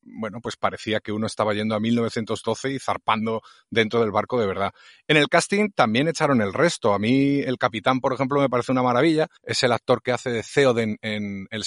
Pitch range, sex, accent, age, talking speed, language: 110-145 Hz, male, Spanish, 30-49, 215 wpm, Spanish